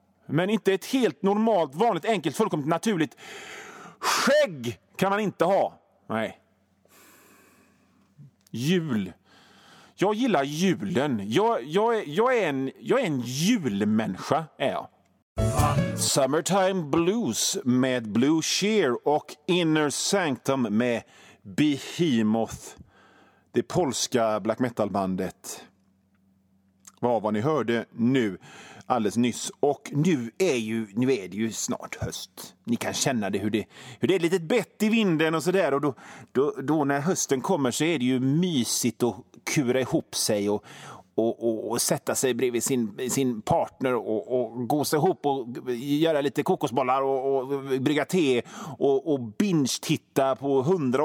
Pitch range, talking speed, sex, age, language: 125-190 Hz, 140 wpm, male, 40-59, Swedish